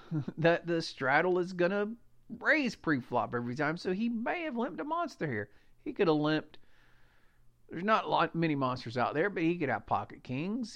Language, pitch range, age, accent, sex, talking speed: English, 120-200 Hz, 50-69, American, male, 200 wpm